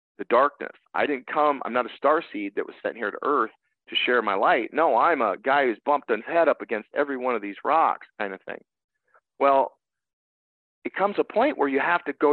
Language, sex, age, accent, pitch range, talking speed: English, male, 40-59, American, 120-180 Hz, 235 wpm